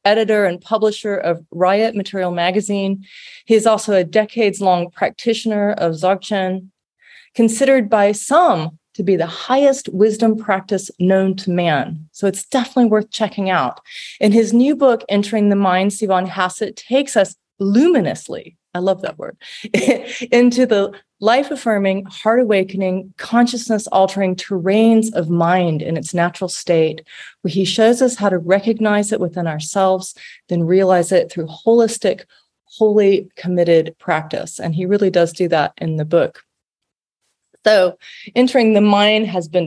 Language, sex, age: English, female, 30-49